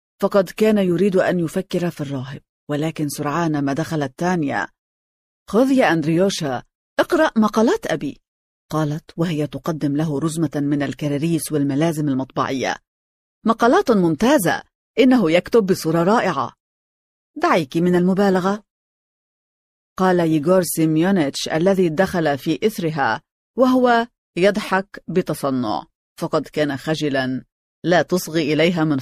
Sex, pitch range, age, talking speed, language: female, 150-205 Hz, 40-59, 110 wpm, Arabic